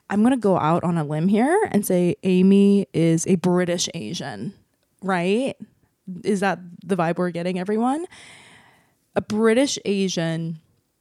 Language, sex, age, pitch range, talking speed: English, female, 20-39, 170-220 Hz, 140 wpm